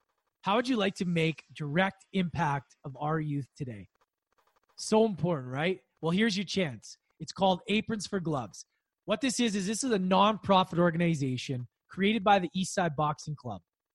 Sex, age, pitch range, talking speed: male, 20-39, 155-200 Hz, 170 wpm